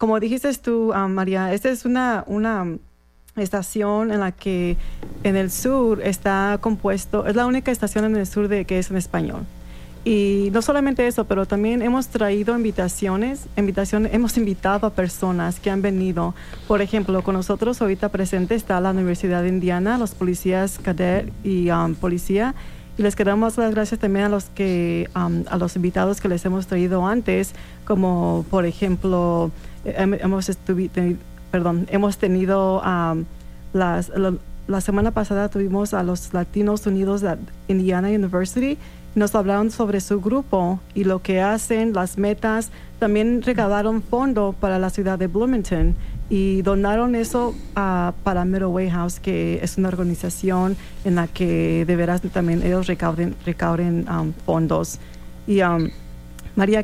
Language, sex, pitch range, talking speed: English, female, 180-210 Hz, 155 wpm